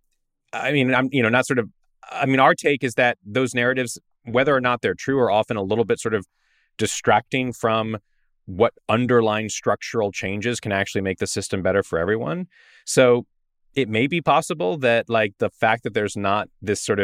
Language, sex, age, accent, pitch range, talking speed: English, male, 30-49, American, 95-120 Hz, 195 wpm